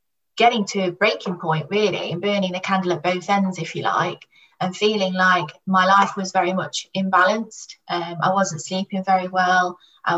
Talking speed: 190 wpm